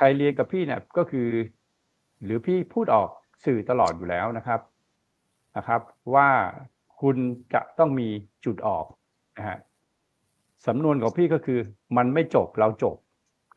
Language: Thai